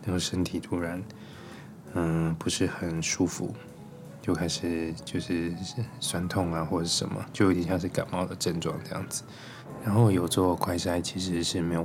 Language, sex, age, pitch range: Chinese, male, 20-39, 85-105 Hz